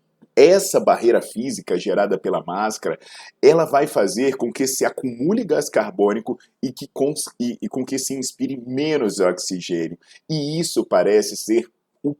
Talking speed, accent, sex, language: 150 wpm, Brazilian, male, Portuguese